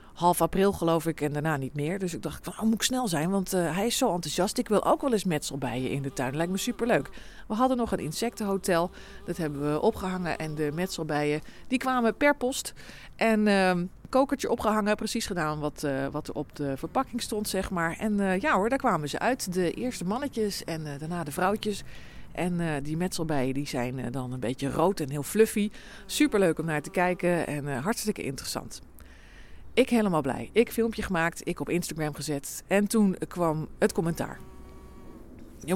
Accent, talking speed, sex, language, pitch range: Dutch, 205 wpm, female, Dutch, 150-210 Hz